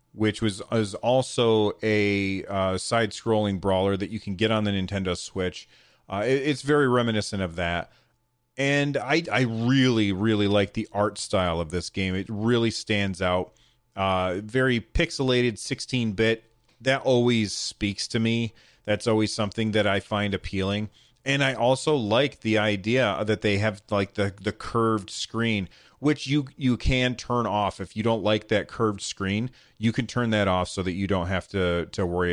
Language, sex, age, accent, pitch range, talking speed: English, male, 30-49, American, 100-120 Hz, 175 wpm